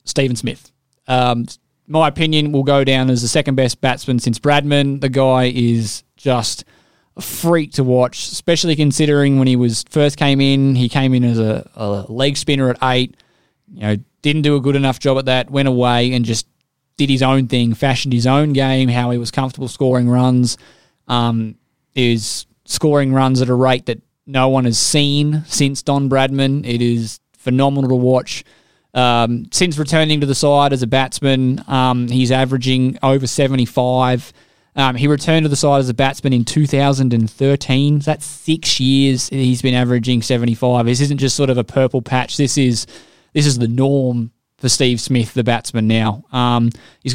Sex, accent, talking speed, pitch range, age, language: male, Australian, 185 wpm, 125-140 Hz, 20-39, English